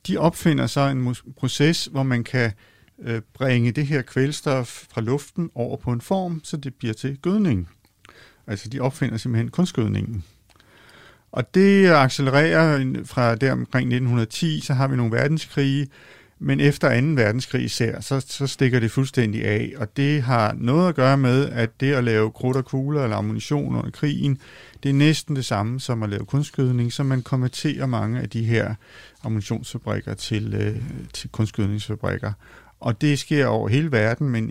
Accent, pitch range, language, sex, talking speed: native, 115-145 Hz, Danish, male, 165 wpm